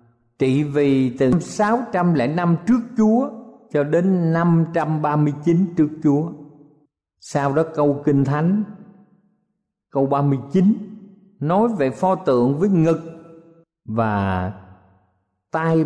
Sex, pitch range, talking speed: male, 130-180 Hz, 100 wpm